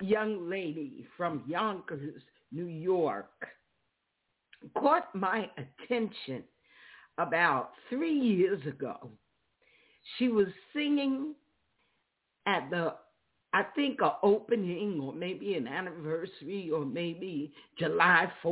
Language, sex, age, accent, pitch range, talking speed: English, female, 50-69, American, 170-270 Hz, 95 wpm